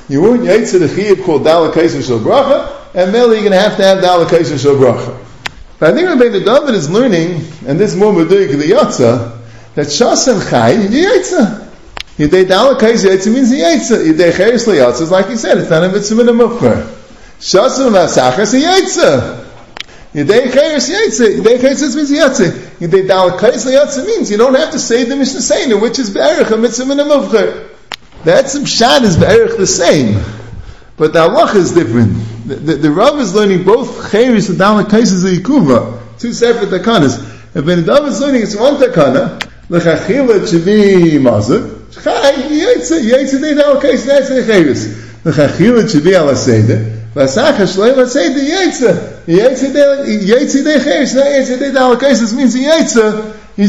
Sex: male